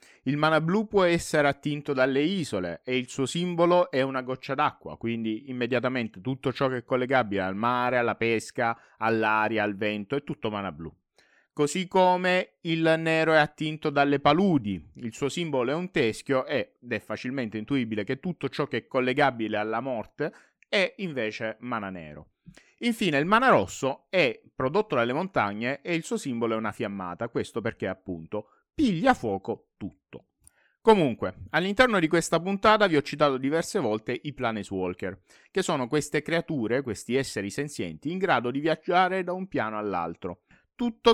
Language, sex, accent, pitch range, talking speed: Italian, male, native, 110-170 Hz, 165 wpm